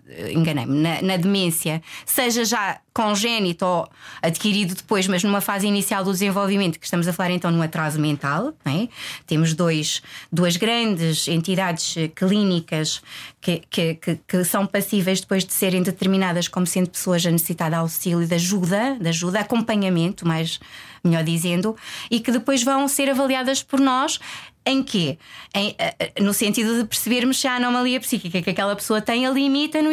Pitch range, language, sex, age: 175-245 Hz, Portuguese, female, 20-39